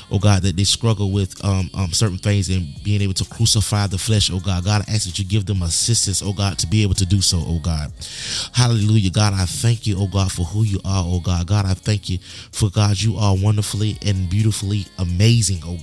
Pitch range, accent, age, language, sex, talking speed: 100-115 Hz, American, 20-39, English, male, 240 wpm